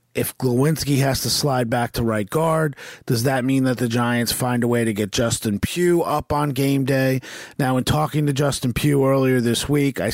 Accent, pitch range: American, 120-140 Hz